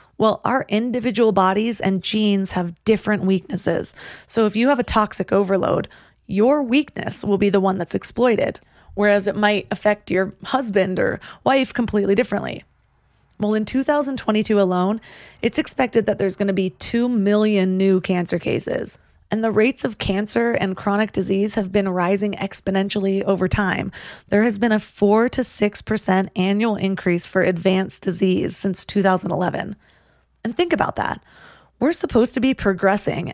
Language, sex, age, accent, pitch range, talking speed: English, female, 20-39, American, 190-225 Hz, 160 wpm